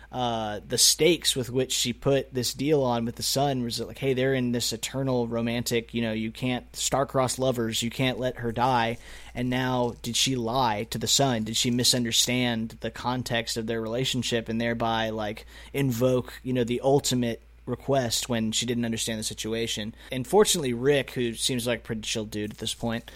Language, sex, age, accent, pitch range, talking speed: English, male, 20-39, American, 115-125 Hz, 195 wpm